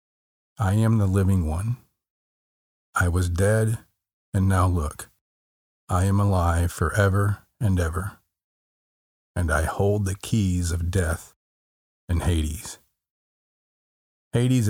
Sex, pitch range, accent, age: male, 85-105 Hz, American, 40-59